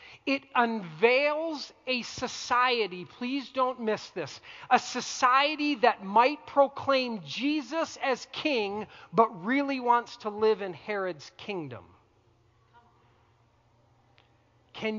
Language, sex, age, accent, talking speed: English, male, 40-59, American, 100 wpm